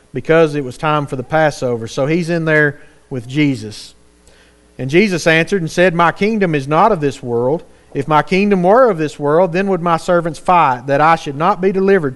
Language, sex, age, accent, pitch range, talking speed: English, male, 40-59, American, 125-175 Hz, 210 wpm